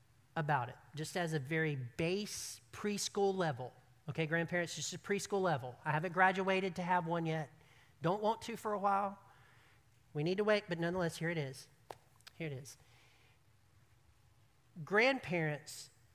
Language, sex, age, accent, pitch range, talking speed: English, male, 40-59, American, 135-205 Hz, 150 wpm